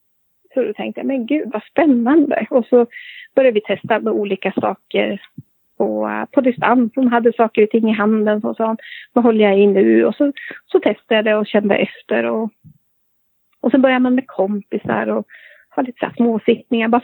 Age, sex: 30-49, female